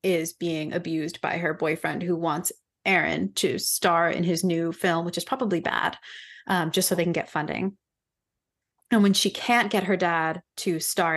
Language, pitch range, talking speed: English, 170-210 Hz, 190 wpm